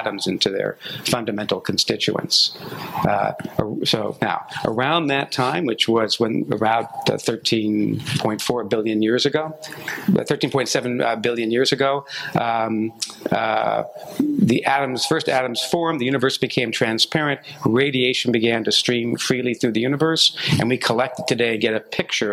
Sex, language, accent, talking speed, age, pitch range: male, English, American, 130 wpm, 50-69, 115-140 Hz